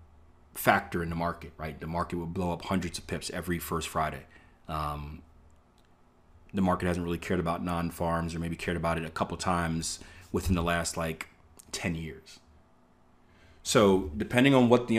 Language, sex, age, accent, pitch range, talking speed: English, male, 30-49, American, 80-95 Hz, 170 wpm